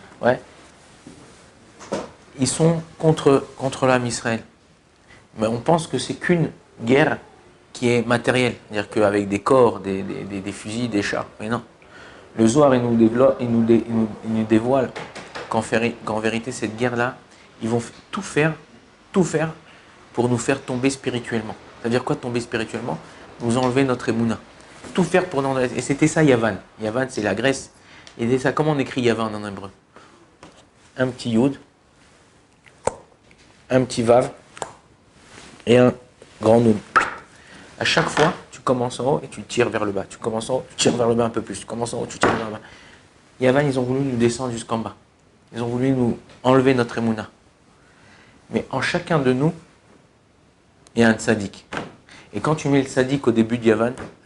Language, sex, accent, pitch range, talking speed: French, male, French, 110-130 Hz, 175 wpm